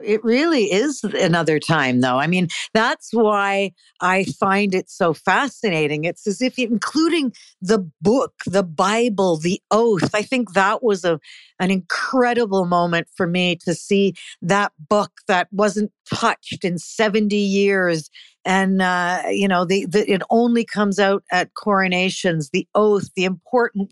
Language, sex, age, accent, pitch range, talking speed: English, female, 50-69, American, 180-215 Hz, 155 wpm